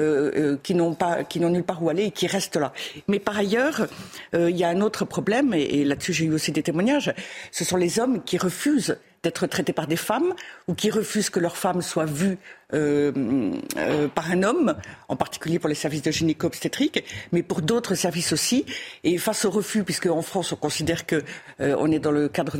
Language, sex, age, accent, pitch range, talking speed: French, female, 50-69, French, 165-215 Hz, 220 wpm